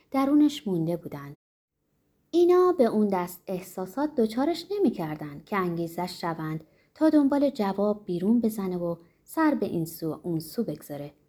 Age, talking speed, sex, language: 30-49, 145 wpm, female, Persian